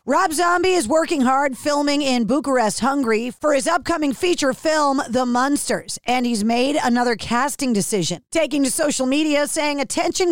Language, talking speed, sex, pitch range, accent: English, 165 wpm, female, 230-305 Hz, American